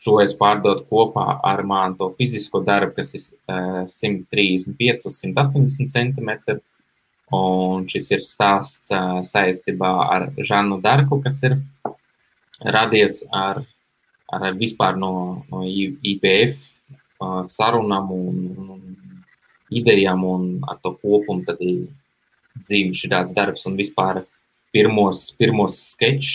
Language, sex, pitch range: English, male, 95-120 Hz